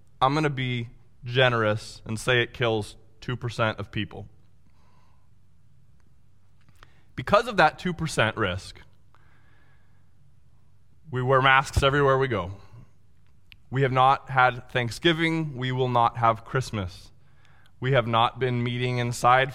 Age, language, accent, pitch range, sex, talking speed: 20-39, English, American, 105-135 Hz, male, 120 wpm